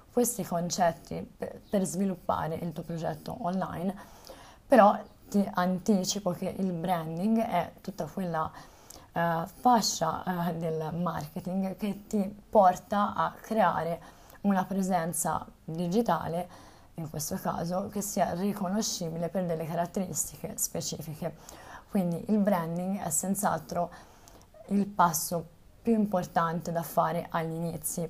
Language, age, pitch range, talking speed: Italian, 20-39, 165-195 Hz, 110 wpm